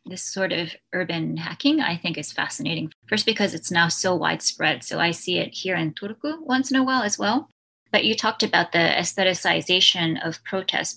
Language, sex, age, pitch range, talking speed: English, female, 20-39, 170-215 Hz, 195 wpm